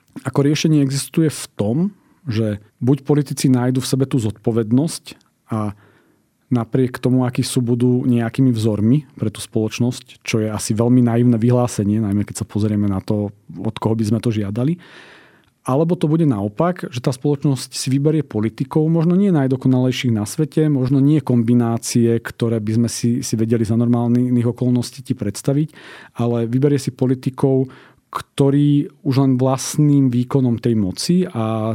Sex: male